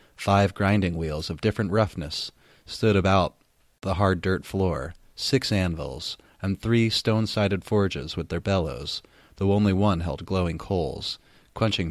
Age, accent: 30-49, American